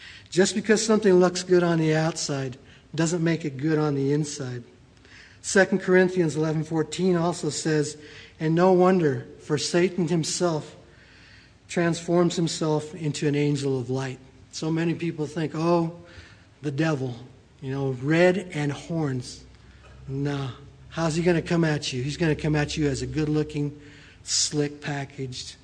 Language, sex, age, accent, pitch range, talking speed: English, male, 60-79, American, 140-180 Hz, 145 wpm